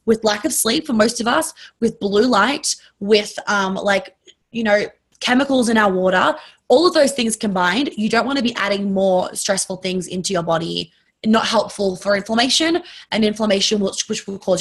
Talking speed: 195 wpm